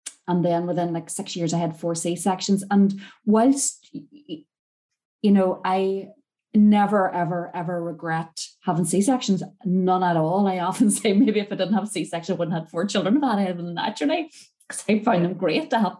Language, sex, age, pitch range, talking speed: English, female, 30-49, 170-200 Hz, 190 wpm